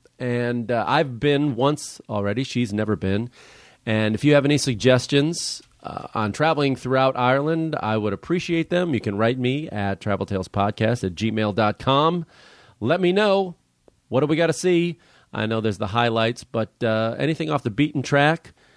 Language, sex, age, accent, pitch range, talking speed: English, male, 40-59, American, 105-140 Hz, 170 wpm